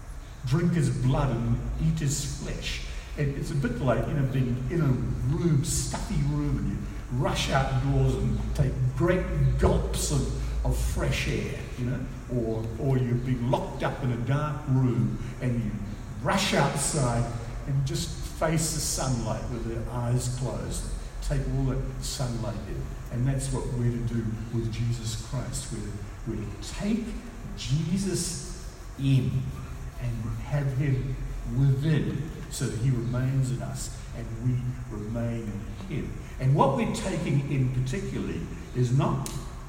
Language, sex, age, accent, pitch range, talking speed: English, male, 50-69, British, 115-140 Hz, 155 wpm